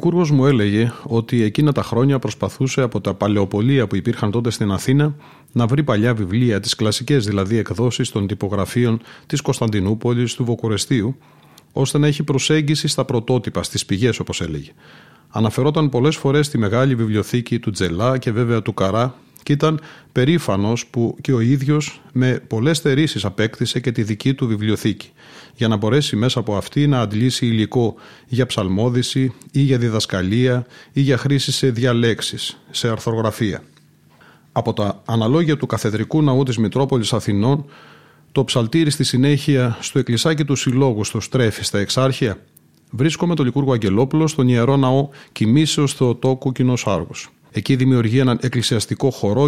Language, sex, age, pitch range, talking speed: Greek, male, 40-59, 110-140 Hz, 150 wpm